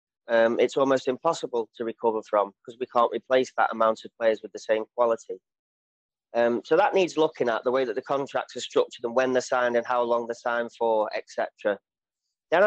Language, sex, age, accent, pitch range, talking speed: English, male, 30-49, British, 110-155 Hz, 210 wpm